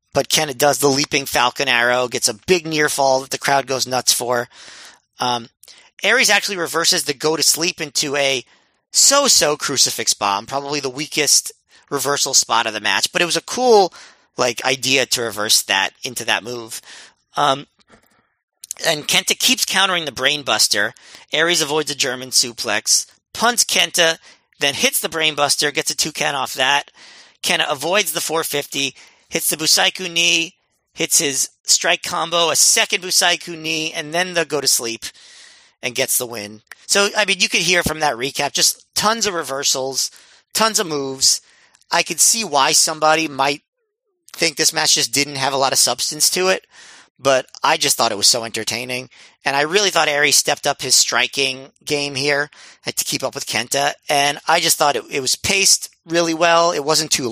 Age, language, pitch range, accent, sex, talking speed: 40-59, English, 135-170 Hz, American, male, 185 wpm